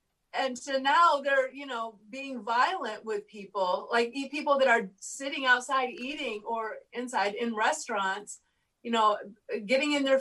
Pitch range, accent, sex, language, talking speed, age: 230-275 Hz, American, female, English, 155 wpm, 40-59